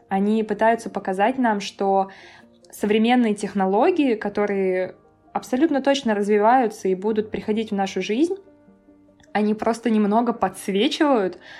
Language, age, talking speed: Russian, 20-39, 110 wpm